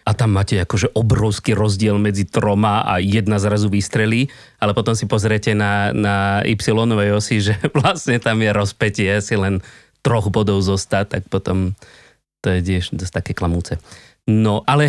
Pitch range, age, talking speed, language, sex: 105-130 Hz, 30-49, 160 wpm, Slovak, male